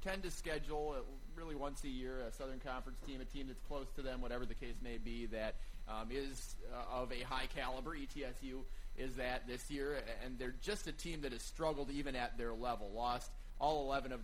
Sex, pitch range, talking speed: male, 120-145 Hz, 220 wpm